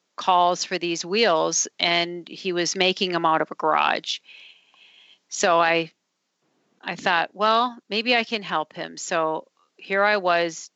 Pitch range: 170-195 Hz